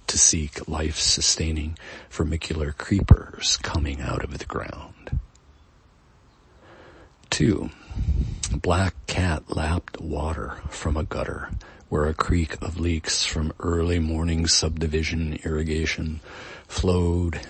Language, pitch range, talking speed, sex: English, 75-85 Hz, 100 wpm, male